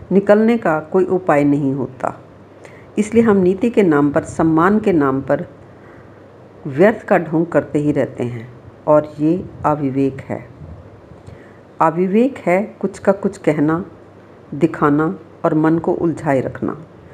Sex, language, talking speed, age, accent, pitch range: female, Hindi, 135 wpm, 50-69, native, 135-185 Hz